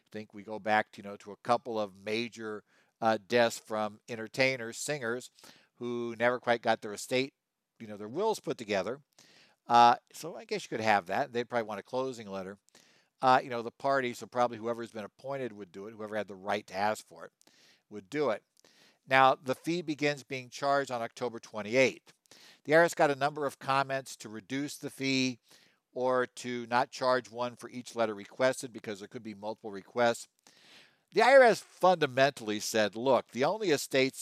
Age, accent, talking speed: 60-79, American, 195 wpm